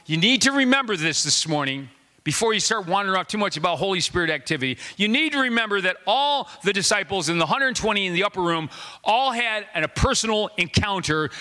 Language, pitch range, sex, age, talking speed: English, 160-235 Hz, male, 40-59, 200 wpm